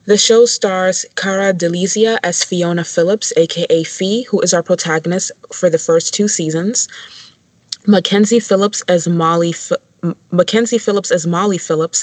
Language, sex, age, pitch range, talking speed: English, female, 20-39, 165-190 Hz, 120 wpm